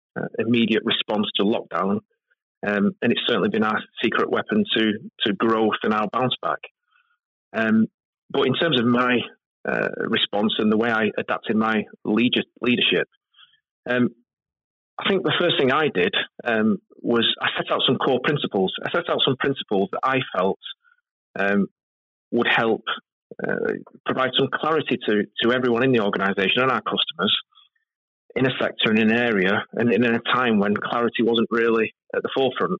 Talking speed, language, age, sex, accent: 170 wpm, English, 30-49, male, British